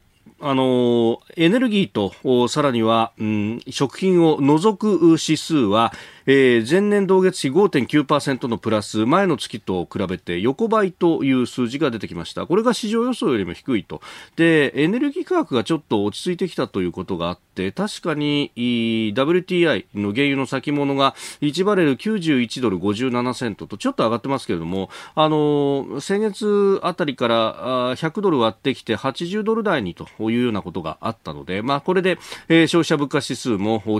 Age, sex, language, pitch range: 40-59, male, Japanese, 115-180 Hz